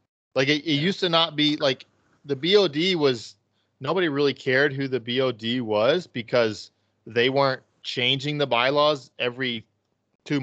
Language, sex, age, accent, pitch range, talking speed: English, male, 20-39, American, 110-135 Hz, 150 wpm